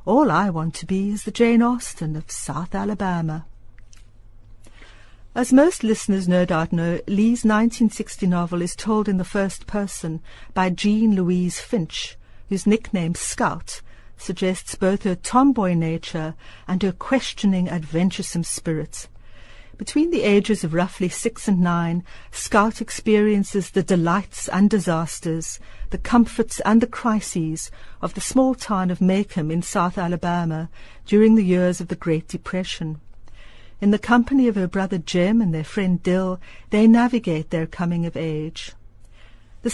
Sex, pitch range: female, 160-205 Hz